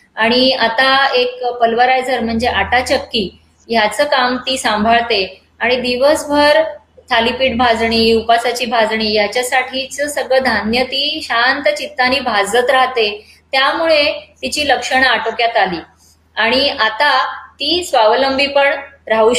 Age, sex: 20-39, female